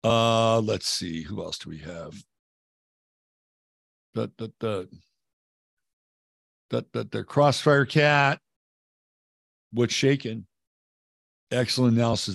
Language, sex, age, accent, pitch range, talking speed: English, male, 60-79, American, 100-145 Hz, 100 wpm